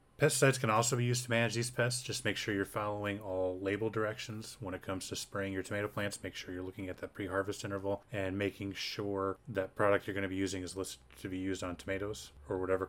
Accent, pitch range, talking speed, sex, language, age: American, 95-120 Hz, 240 wpm, male, English, 30-49